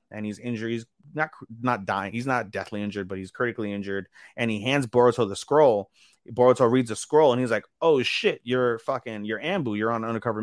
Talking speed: 220 wpm